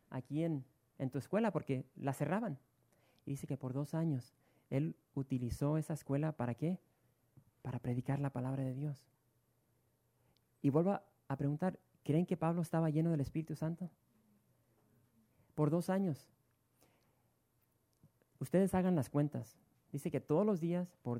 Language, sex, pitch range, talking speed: English, male, 120-155 Hz, 145 wpm